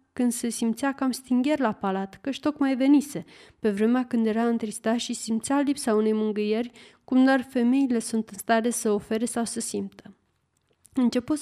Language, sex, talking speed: Romanian, female, 175 wpm